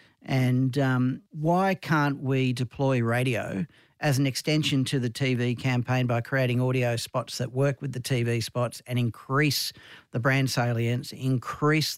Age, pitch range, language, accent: 50-69, 120-140 Hz, English, Australian